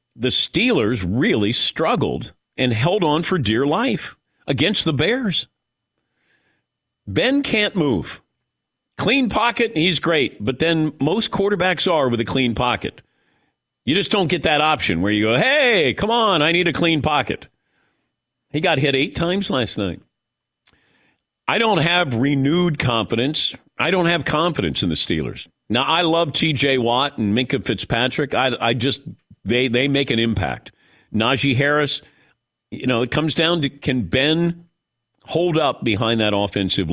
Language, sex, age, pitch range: English, male, 50-69, 115-165 Hz